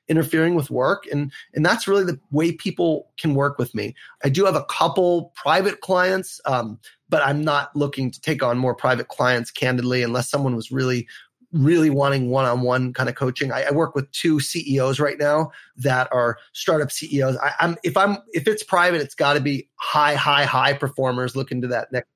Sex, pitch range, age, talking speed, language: male, 130-165 Hz, 30-49, 205 wpm, English